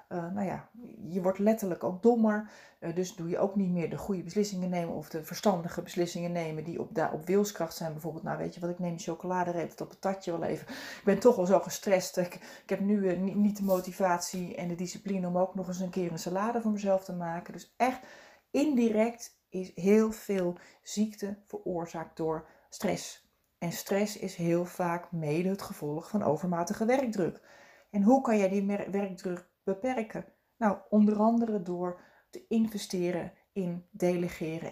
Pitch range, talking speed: 175-215 Hz, 195 wpm